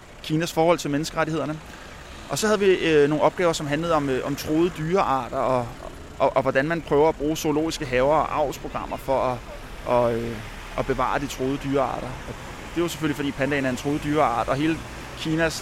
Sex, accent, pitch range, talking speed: male, native, 130-175 Hz, 210 wpm